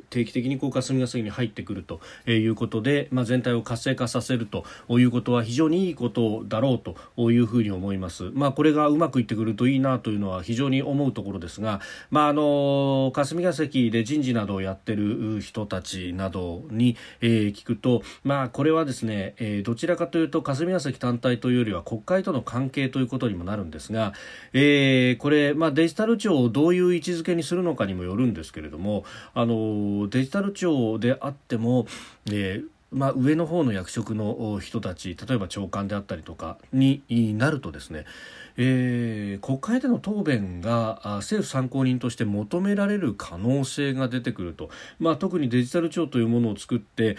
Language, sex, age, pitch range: Japanese, male, 40-59, 105-140 Hz